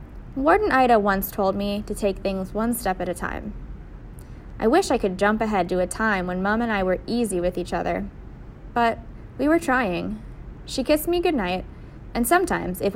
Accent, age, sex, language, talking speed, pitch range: American, 20-39, female, English, 195 wpm, 190-245 Hz